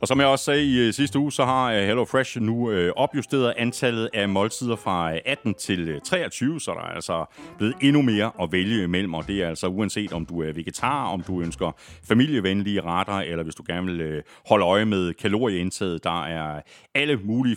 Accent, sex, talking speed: native, male, 200 wpm